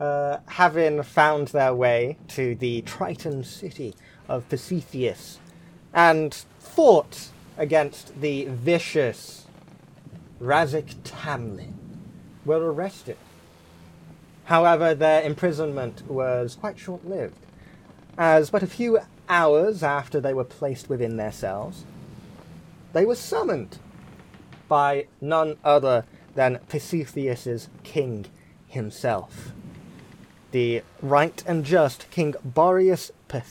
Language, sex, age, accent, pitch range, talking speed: English, male, 30-49, British, 125-165 Hz, 95 wpm